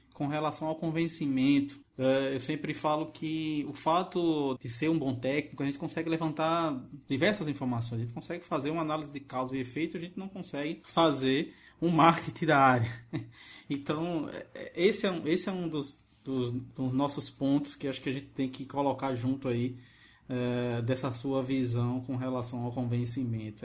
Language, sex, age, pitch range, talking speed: Portuguese, male, 20-39, 130-155 Hz, 165 wpm